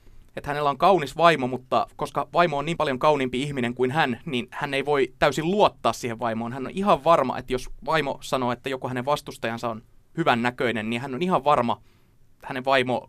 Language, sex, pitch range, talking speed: Finnish, male, 115-135 Hz, 210 wpm